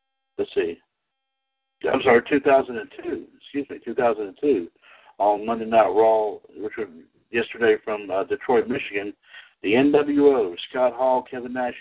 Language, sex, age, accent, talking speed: English, male, 60-79, American, 125 wpm